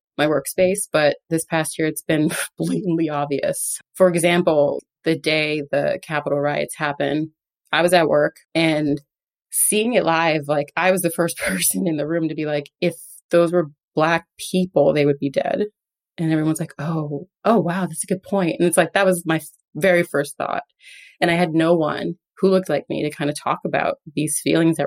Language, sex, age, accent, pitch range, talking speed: English, female, 30-49, American, 150-180 Hz, 200 wpm